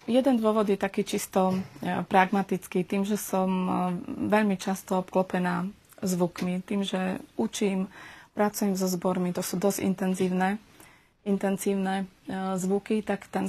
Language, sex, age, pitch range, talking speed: Slovak, female, 20-39, 185-205 Hz, 120 wpm